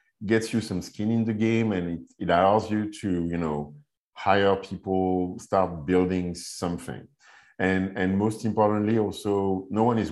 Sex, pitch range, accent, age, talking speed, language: male, 85-105 Hz, French, 50-69, 165 wpm, English